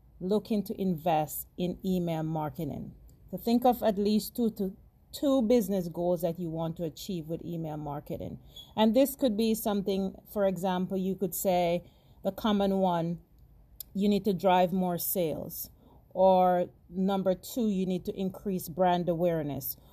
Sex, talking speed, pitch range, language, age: female, 155 wpm, 165-195 Hz, English, 40-59